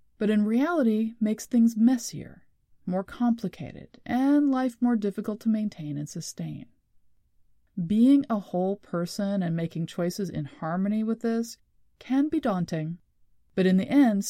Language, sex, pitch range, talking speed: English, female, 180-235 Hz, 145 wpm